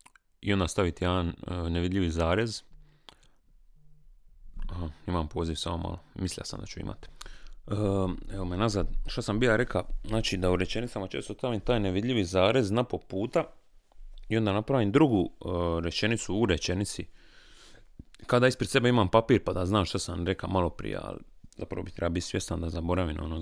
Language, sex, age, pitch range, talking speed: Croatian, male, 30-49, 90-105 Hz, 170 wpm